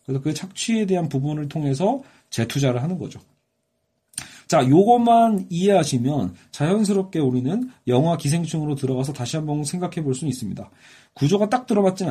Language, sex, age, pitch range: Korean, male, 40-59, 135-190 Hz